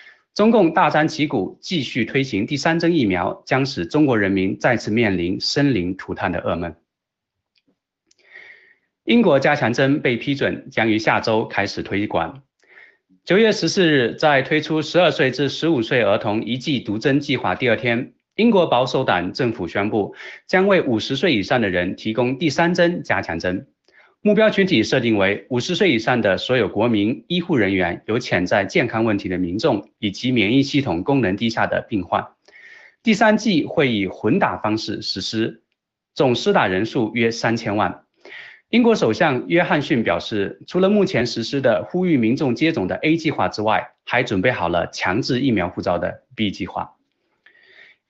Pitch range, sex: 105-160 Hz, male